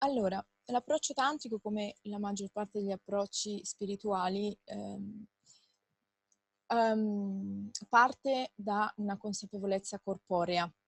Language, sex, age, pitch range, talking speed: Italian, female, 20-39, 190-215 Hz, 95 wpm